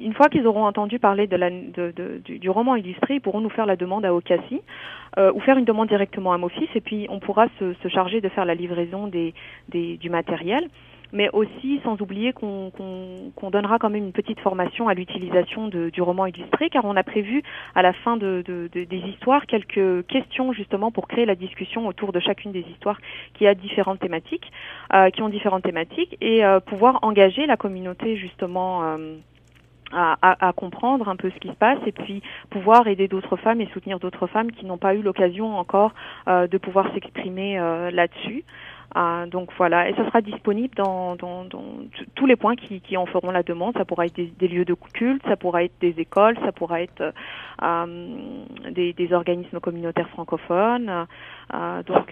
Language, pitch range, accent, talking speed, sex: French, 180-220 Hz, French, 205 wpm, female